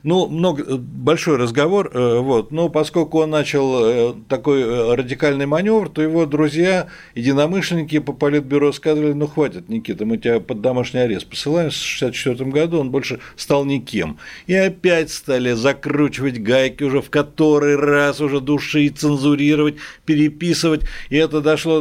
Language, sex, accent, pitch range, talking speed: Russian, male, native, 140-165 Hz, 135 wpm